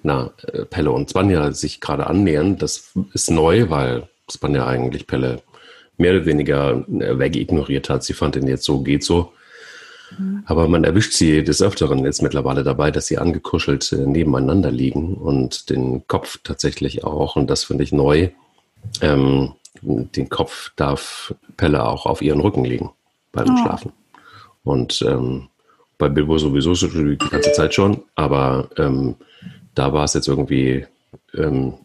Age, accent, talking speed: 40-59, German, 150 wpm